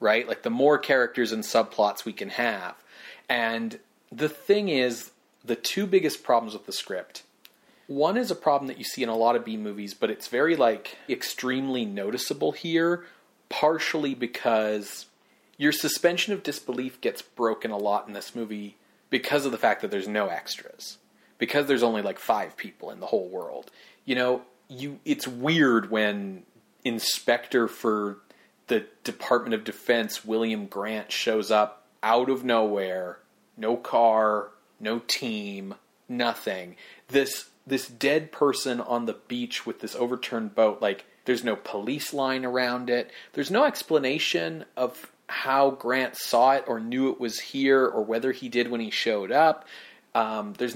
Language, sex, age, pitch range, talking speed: English, male, 30-49, 110-145 Hz, 160 wpm